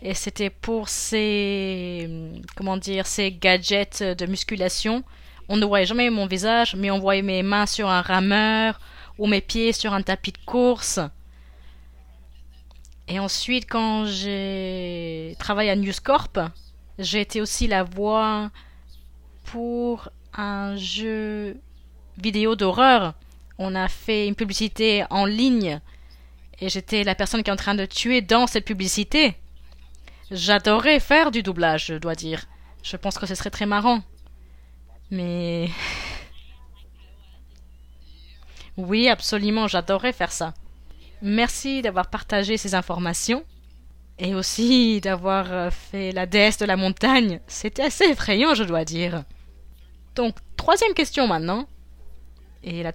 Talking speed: 130 wpm